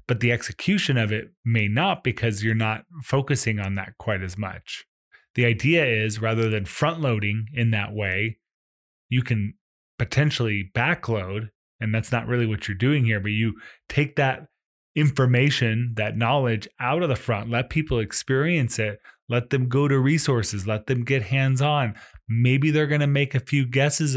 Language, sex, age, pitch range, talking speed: English, male, 20-39, 110-135 Hz, 170 wpm